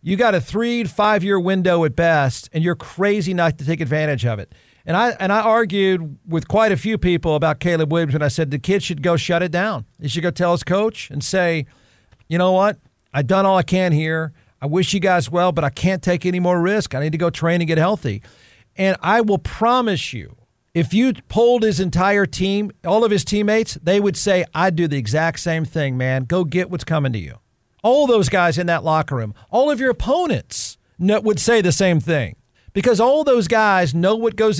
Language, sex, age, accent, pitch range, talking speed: English, male, 50-69, American, 155-200 Hz, 225 wpm